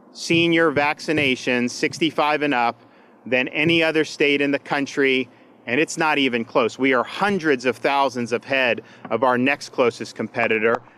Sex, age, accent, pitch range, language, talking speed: male, 40-59, American, 130-170 Hz, English, 160 wpm